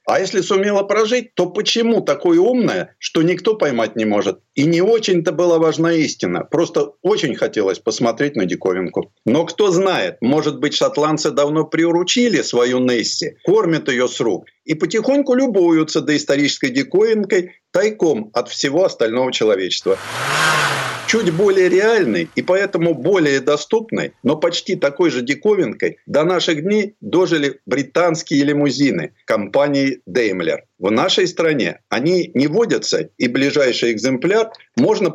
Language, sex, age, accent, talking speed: Russian, male, 50-69, native, 135 wpm